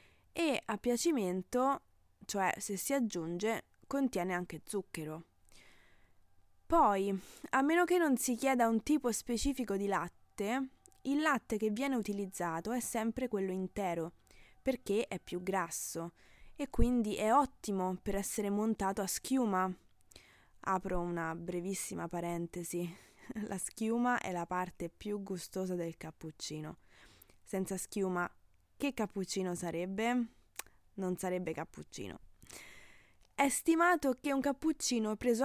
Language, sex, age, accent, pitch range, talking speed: Italian, female, 20-39, native, 180-245 Hz, 120 wpm